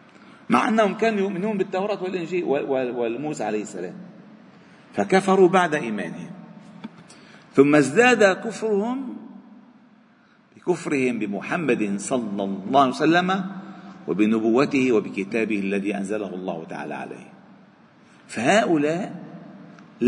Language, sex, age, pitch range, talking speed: Arabic, male, 50-69, 145-205 Hz, 85 wpm